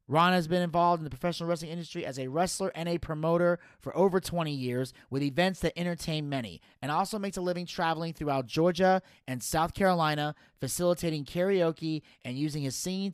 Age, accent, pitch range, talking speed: 30-49, American, 130-170 Hz, 185 wpm